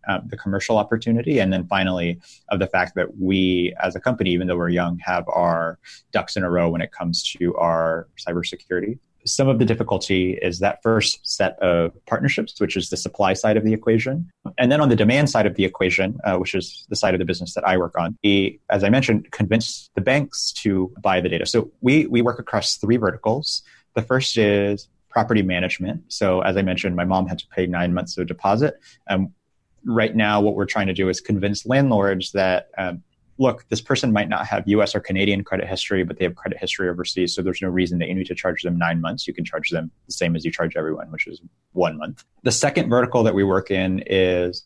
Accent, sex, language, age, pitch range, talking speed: American, male, English, 30-49, 90-110 Hz, 230 wpm